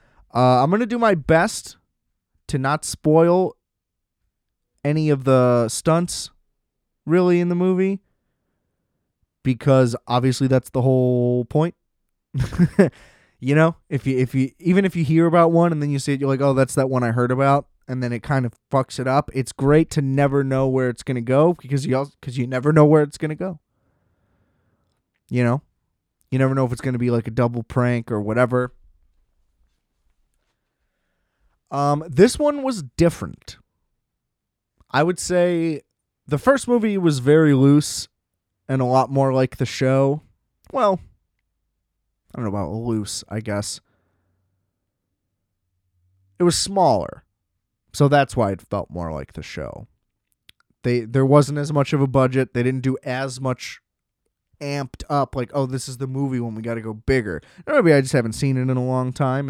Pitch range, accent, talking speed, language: 115-145 Hz, American, 170 wpm, English